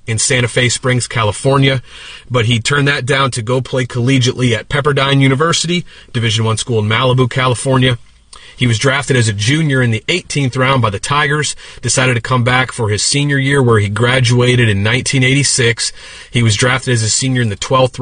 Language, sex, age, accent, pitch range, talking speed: English, male, 30-49, American, 115-140 Hz, 195 wpm